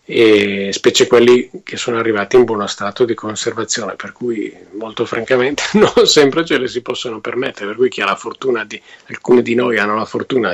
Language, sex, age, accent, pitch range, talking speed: Italian, male, 40-59, native, 110-140 Hz, 200 wpm